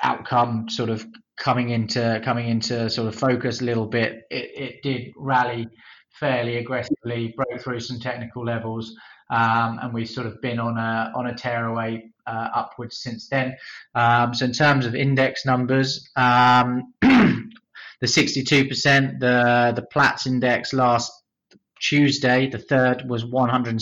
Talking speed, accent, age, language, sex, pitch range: 150 wpm, British, 20-39, English, male, 115-130 Hz